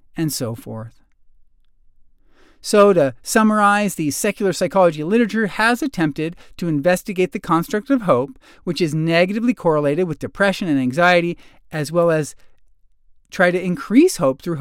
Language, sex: English, male